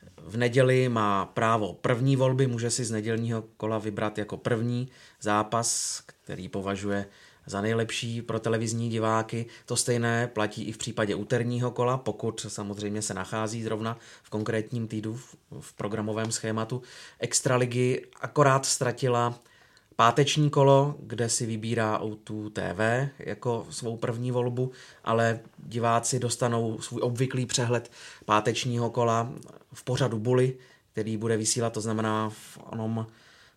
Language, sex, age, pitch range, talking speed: Czech, male, 30-49, 110-125 Hz, 130 wpm